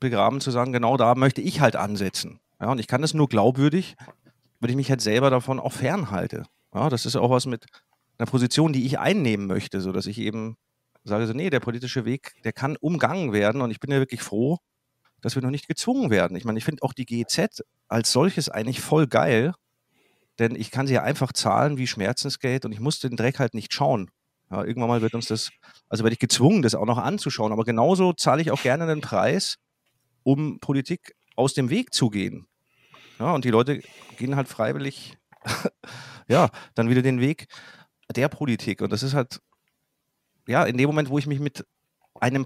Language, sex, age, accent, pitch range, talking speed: German, male, 40-59, German, 115-145 Hz, 205 wpm